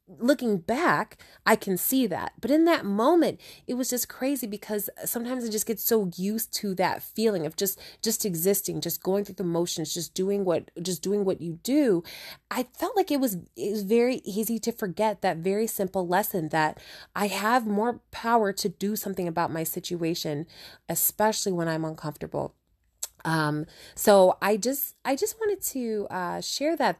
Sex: female